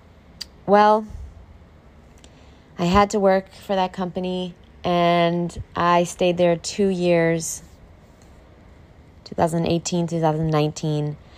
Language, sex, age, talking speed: English, female, 20-39, 85 wpm